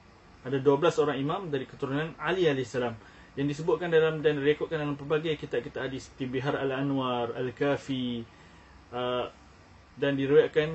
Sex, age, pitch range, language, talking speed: male, 20-39, 120-150 Hz, Malay, 145 wpm